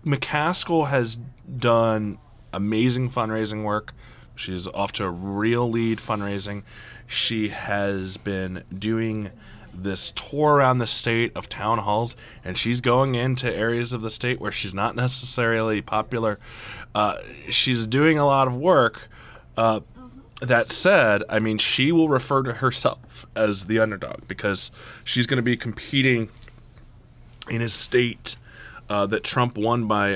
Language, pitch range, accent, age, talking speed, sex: English, 105-125 Hz, American, 20-39, 145 wpm, male